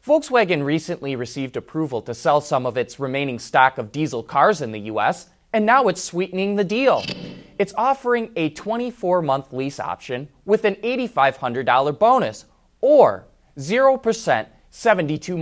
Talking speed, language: 135 wpm, English